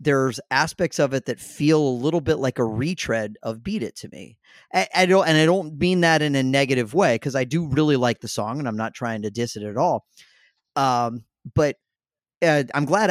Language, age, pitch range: English, 30-49, 120-155 Hz